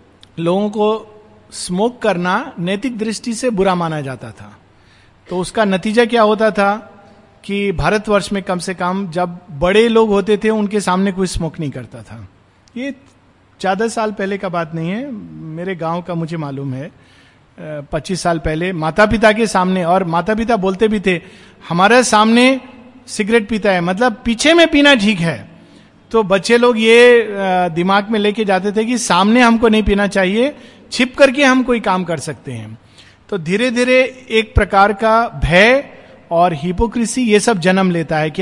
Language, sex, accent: Hindi, male, native